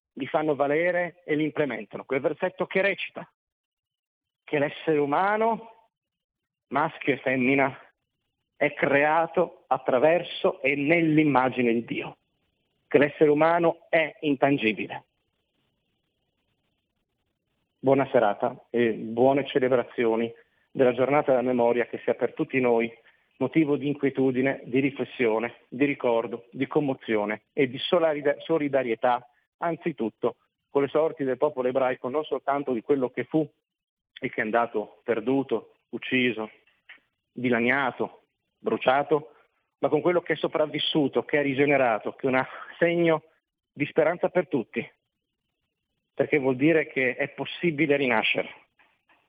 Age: 40-59